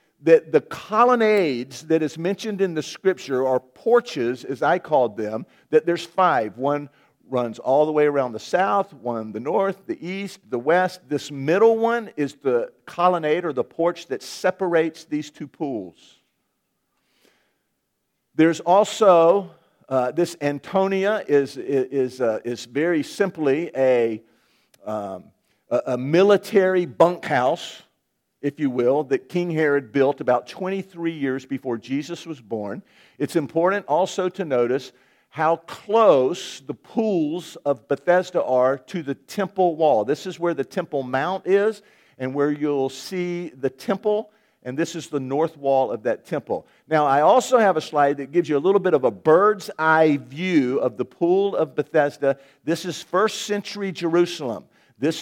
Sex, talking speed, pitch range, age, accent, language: male, 155 wpm, 140-190 Hz, 50-69, American, English